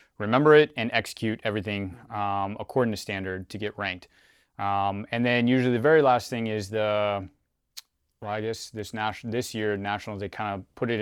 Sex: male